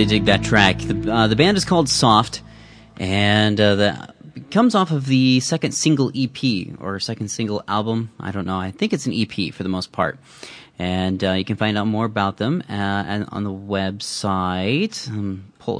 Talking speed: 200 wpm